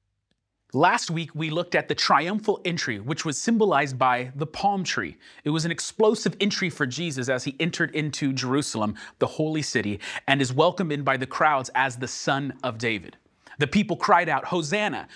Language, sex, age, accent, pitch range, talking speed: English, male, 30-49, American, 130-175 Hz, 185 wpm